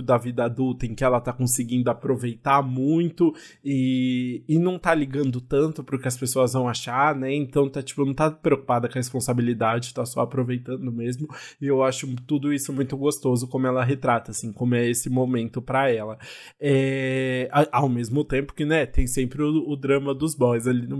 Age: 20-39